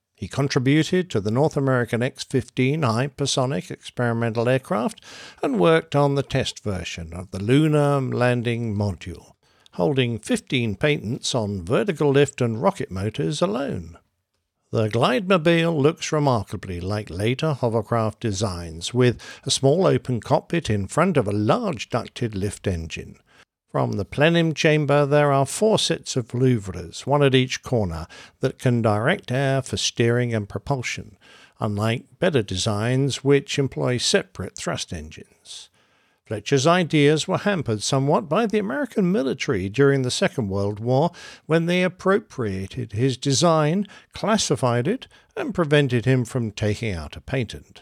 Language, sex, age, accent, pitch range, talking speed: English, male, 60-79, British, 105-150 Hz, 140 wpm